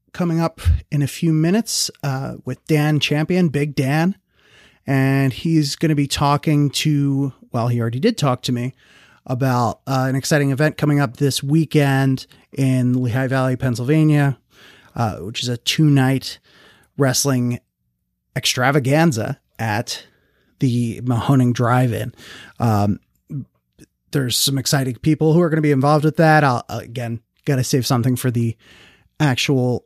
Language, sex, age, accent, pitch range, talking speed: English, male, 30-49, American, 125-155 Hz, 145 wpm